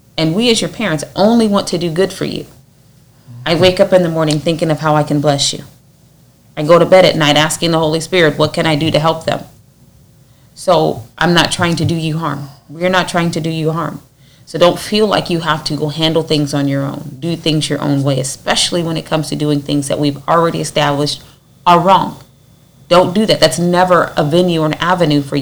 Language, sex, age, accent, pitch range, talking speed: English, female, 30-49, American, 145-175 Hz, 235 wpm